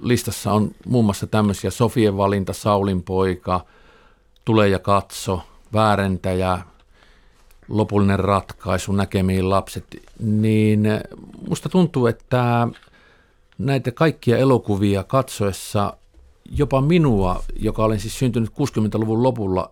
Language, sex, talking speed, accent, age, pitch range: Finnish, male, 105 wpm, native, 50-69, 95-120 Hz